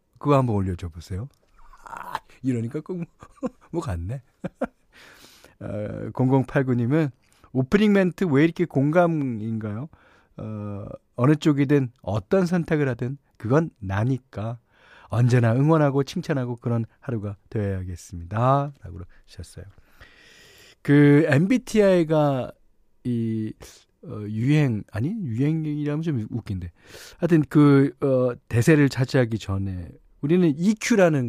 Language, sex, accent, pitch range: Korean, male, native, 100-150 Hz